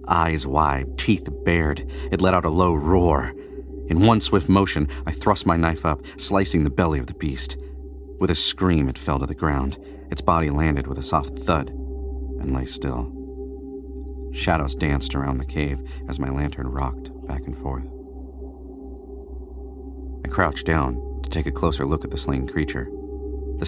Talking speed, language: 170 wpm, English